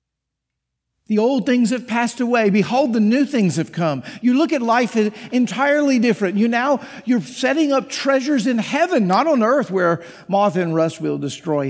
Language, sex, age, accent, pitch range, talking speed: English, male, 50-69, American, 170-240 Hz, 180 wpm